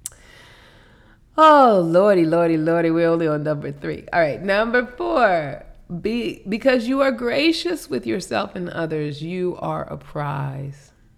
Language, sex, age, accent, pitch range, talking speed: English, female, 30-49, American, 155-195 Hz, 140 wpm